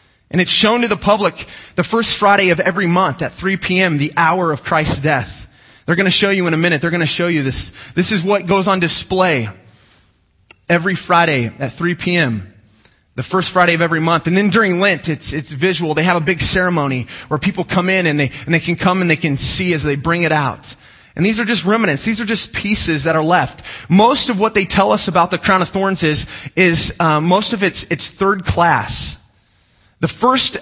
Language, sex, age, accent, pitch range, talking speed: English, male, 20-39, American, 150-190 Hz, 225 wpm